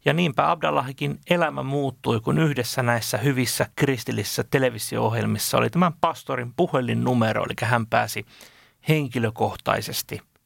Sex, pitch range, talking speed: male, 110-165 Hz, 110 wpm